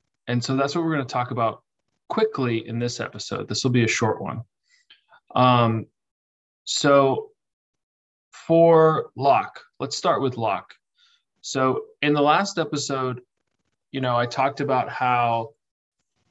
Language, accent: English, American